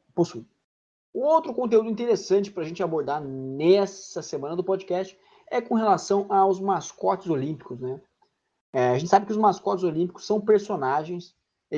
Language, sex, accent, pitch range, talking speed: Portuguese, male, Brazilian, 145-200 Hz, 155 wpm